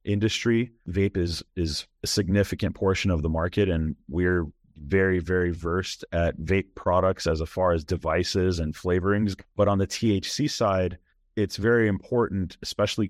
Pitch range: 85-105 Hz